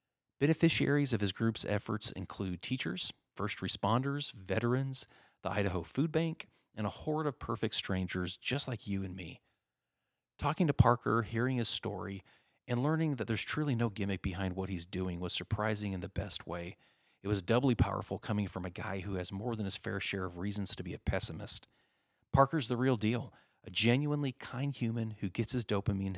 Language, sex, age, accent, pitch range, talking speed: English, male, 30-49, American, 95-120 Hz, 185 wpm